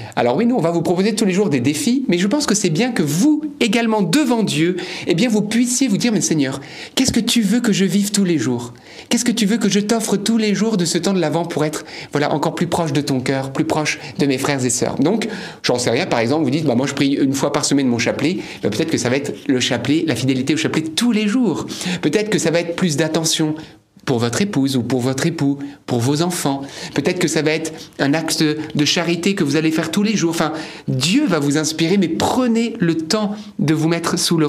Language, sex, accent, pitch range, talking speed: French, male, French, 145-200 Hz, 265 wpm